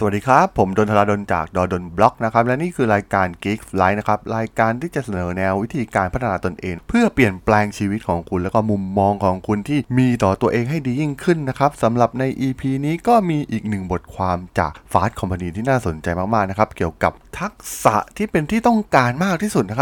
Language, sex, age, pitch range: Thai, male, 20-39, 100-140 Hz